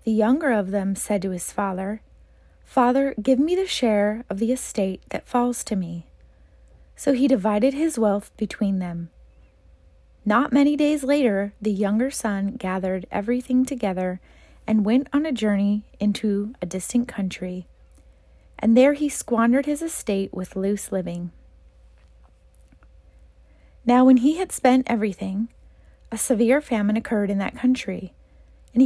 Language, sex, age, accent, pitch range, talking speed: English, female, 30-49, American, 175-250 Hz, 145 wpm